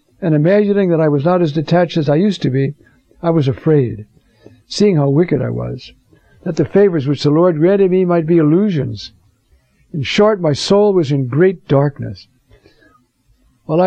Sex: male